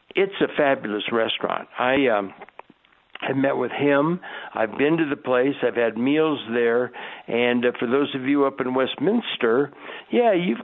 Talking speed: 170 wpm